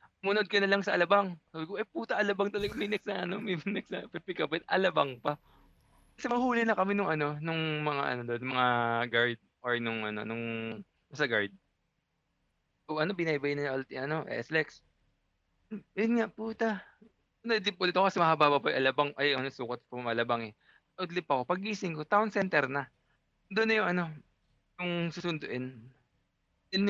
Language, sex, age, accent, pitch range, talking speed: Filipino, male, 20-39, native, 140-205 Hz, 180 wpm